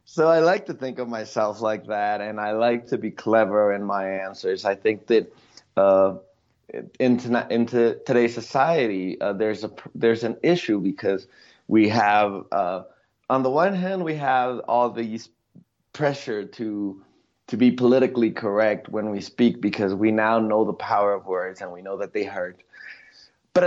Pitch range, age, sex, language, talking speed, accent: 110-140 Hz, 20-39, male, English, 175 wpm, American